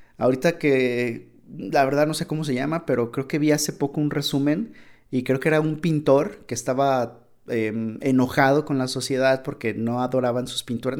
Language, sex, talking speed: Spanish, male, 190 wpm